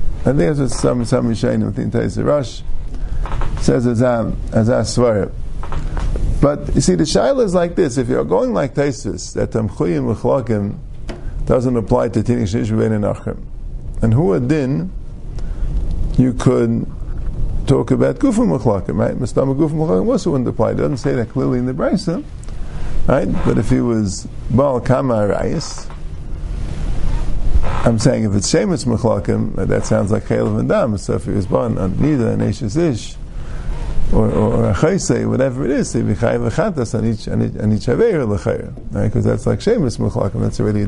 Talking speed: 155 wpm